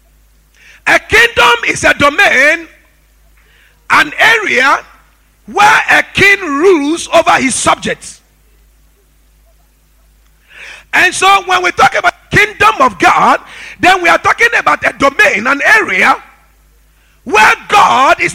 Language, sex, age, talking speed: English, male, 50-69, 115 wpm